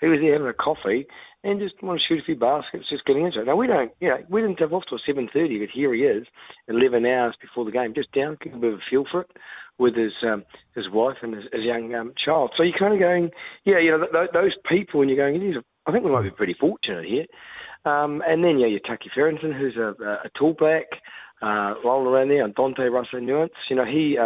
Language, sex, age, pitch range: English, male, 40-59, 115-155 Hz